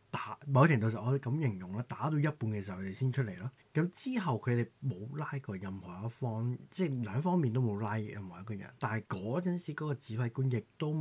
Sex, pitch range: male, 100-140 Hz